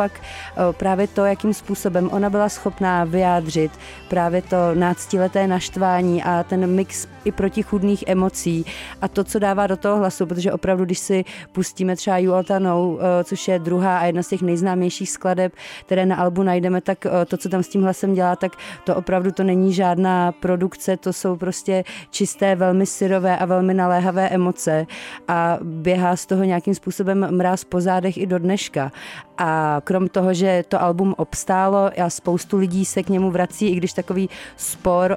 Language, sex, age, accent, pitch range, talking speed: Czech, female, 30-49, native, 175-190 Hz, 175 wpm